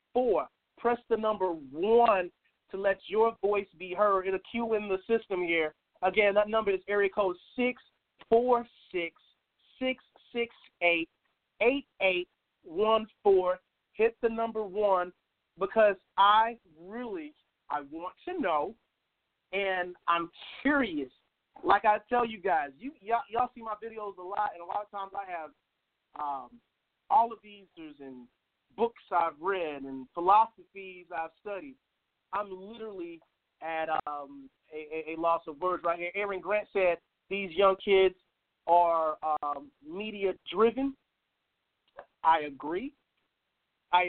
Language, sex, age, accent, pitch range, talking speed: English, male, 40-59, American, 180-235 Hz, 140 wpm